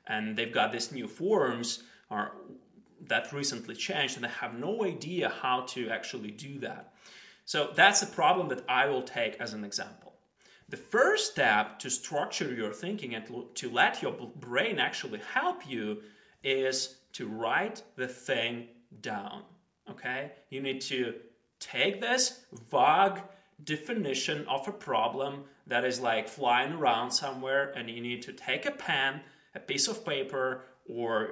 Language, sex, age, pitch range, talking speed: English, male, 30-49, 115-150 Hz, 155 wpm